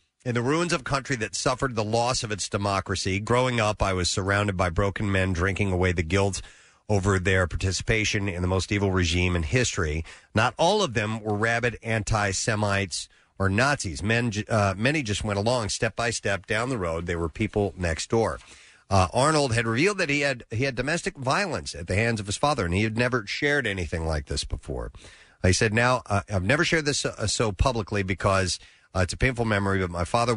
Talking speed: 210 wpm